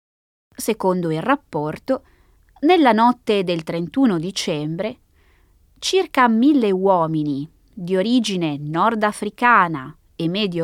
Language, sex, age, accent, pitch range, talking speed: Italian, female, 20-39, native, 160-250 Hz, 90 wpm